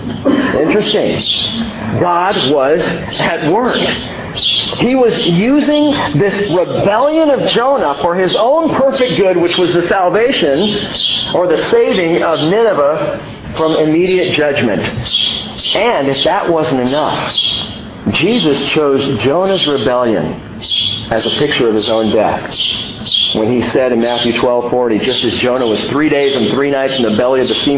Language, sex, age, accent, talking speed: English, male, 50-69, American, 145 wpm